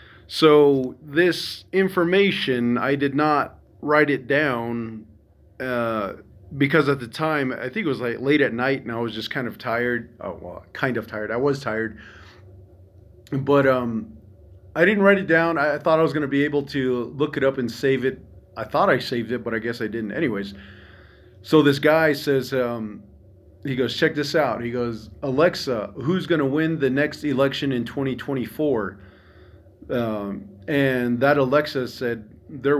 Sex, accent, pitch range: male, American, 100-140 Hz